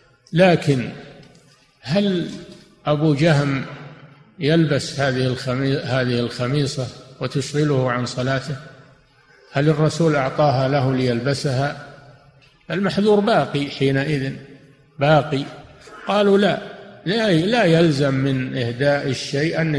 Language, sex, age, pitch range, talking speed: Arabic, male, 50-69, 130-155 Hz, 80 wpm